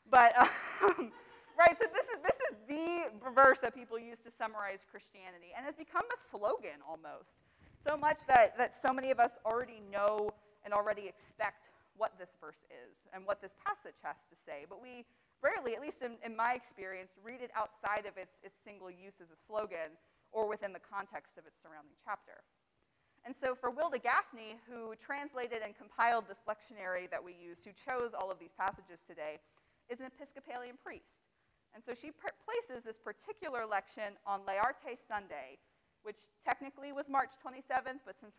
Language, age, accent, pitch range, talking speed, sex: English, 30-49, American, 195-260 Hz, 185 wpm, female